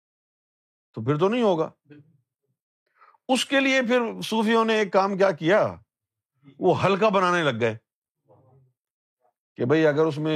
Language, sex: Urdu, male